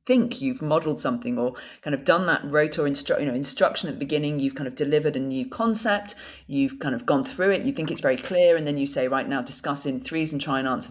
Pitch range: 135-180 Hz